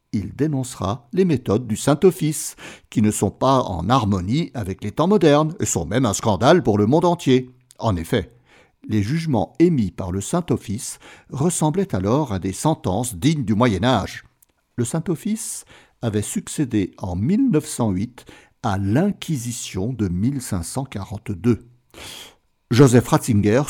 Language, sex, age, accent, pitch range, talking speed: French, male, 60-79, French, 105-150 Hz, 135 wpm